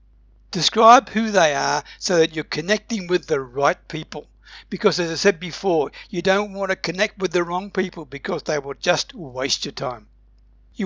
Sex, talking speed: male, 190 wpm